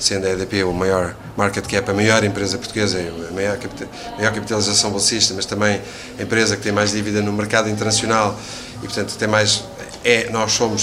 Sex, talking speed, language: male, 175 wpm, Portuguese